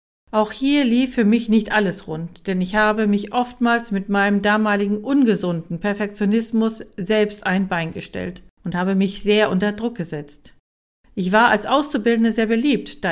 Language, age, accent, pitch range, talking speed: German, 50-69, German, 195-235 Hz, 165 wpm